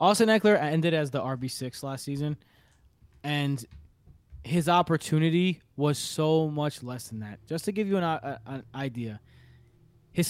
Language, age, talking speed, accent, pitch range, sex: English, 20-39, 150 wpm, American, 125-190 Hz, male